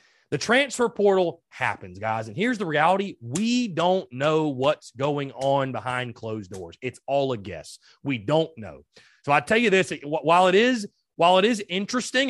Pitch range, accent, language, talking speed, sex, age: 125-185 Hz, American, English, 180 wpm, male, 30-49